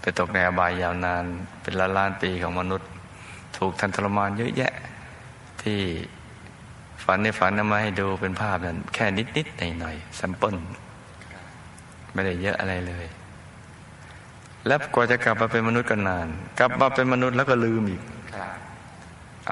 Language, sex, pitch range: Thai, male, 90-110 Hz